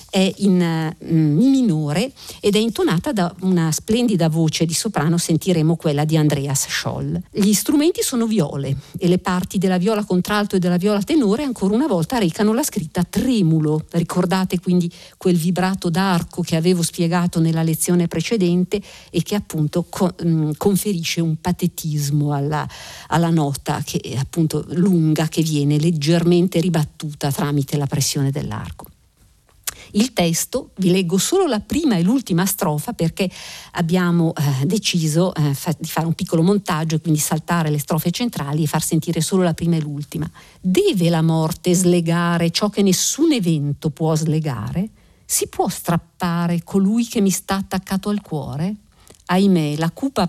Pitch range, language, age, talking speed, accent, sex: 160-195 Hz, Italian, 50-69, 155 wpm, native, female